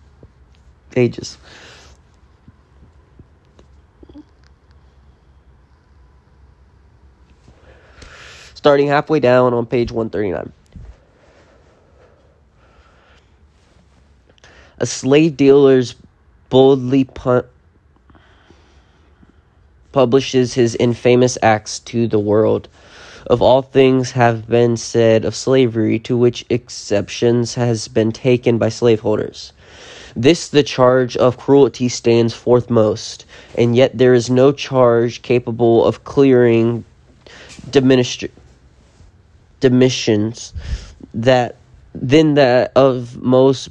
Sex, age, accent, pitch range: male, 20-39, American, 85-125 Hz